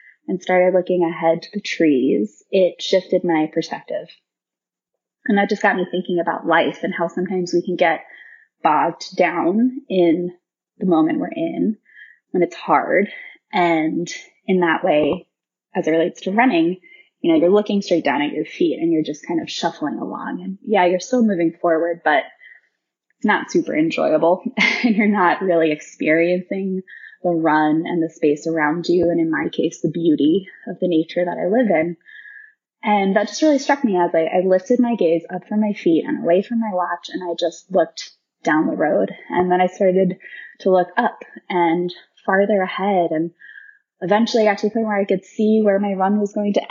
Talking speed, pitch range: 195 wpm, 170-215 Hz